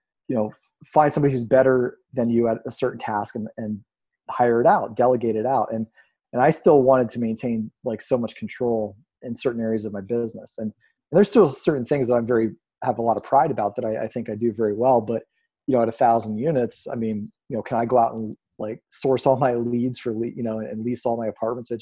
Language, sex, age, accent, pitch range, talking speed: English, male, 30-49, American, 110-125 Hz, 250 wpm